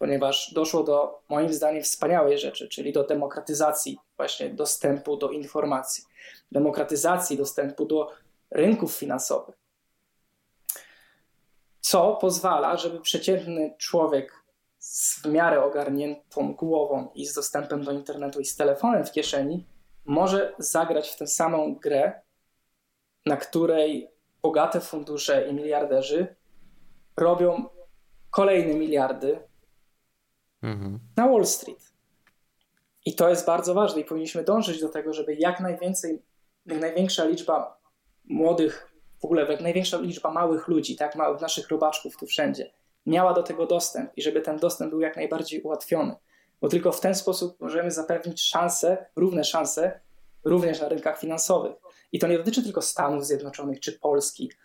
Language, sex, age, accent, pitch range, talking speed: Polish, male, 20-39, native, 150-175 Hz, 135 wpm